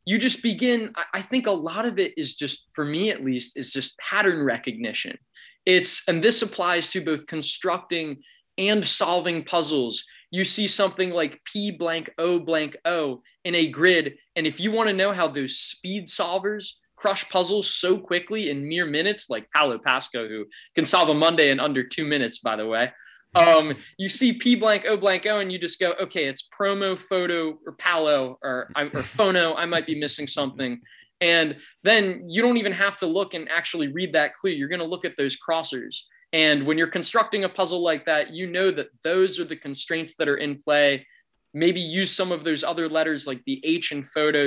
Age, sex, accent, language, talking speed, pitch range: 20-39, male, American, English, 200 wpm, 145-190 Hz